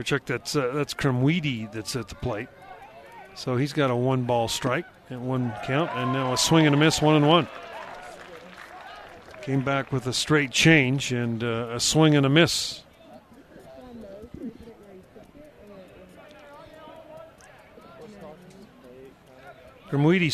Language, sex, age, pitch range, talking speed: English, male, 40-59, 130-165 Hz, 125 wpm